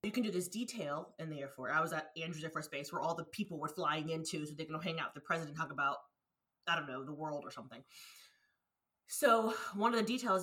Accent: American